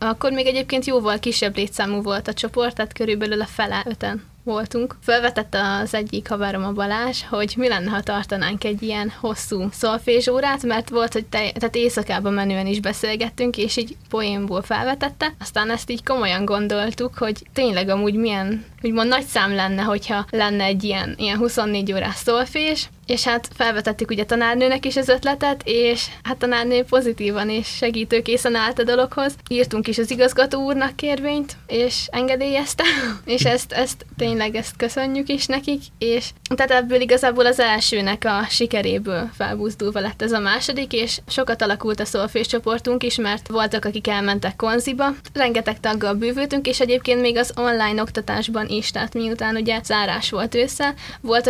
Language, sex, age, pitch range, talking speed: Hungarian, female, 20-39, 210-245 Hz, 160 wpm